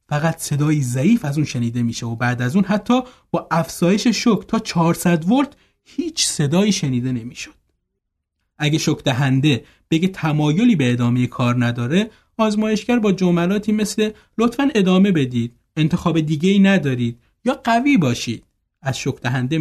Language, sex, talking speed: Persian, male, 140 wpm